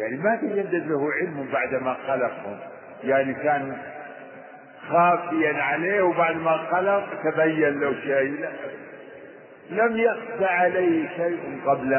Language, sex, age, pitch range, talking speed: Arabic, male, 50-69, 135-180 Hz, 105 wpm